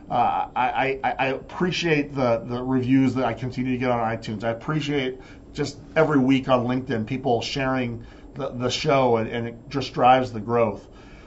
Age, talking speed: 40-59, 180 wpm